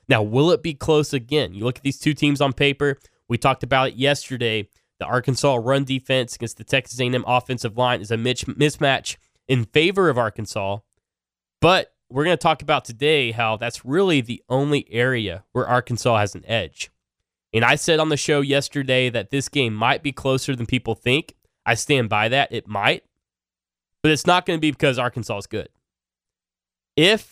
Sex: male